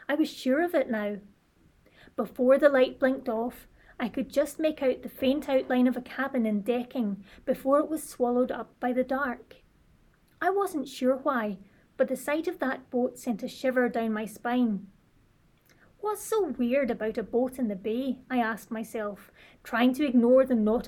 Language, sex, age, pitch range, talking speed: English, female, 30-49, 230-275 Hz, 185 wpm